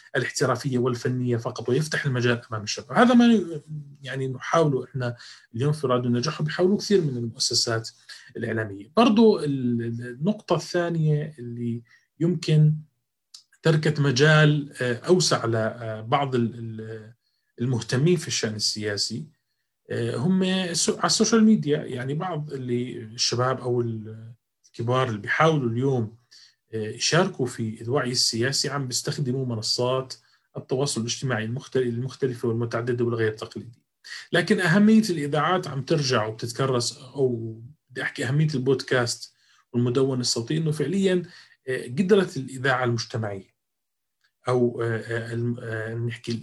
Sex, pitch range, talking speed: male, 120-155 Hz, 105 wpm